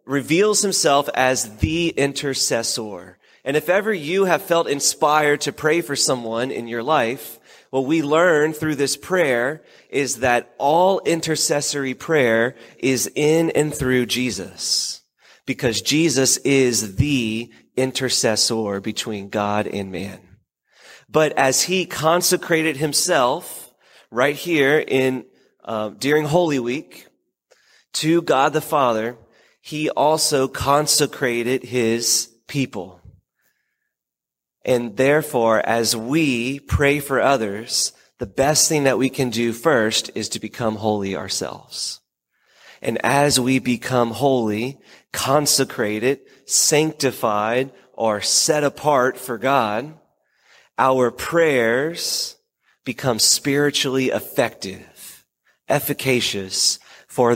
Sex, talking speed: male, 110 wpm